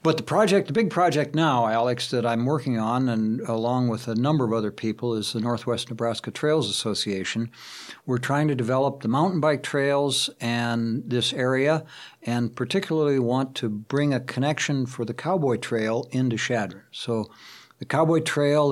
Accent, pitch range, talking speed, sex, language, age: American, 115-140 Hz, 175 wpm, male, English, 60-79